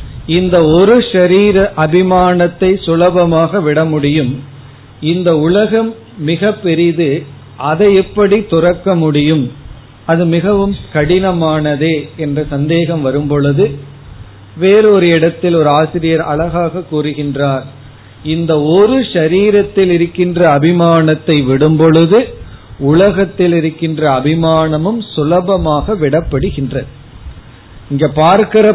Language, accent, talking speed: Tamil, native, 85 wpm